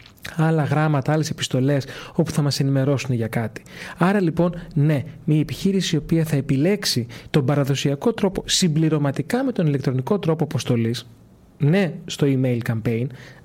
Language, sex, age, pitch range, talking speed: Greek, male, 30-49, 135-180 Hz, 145 wpm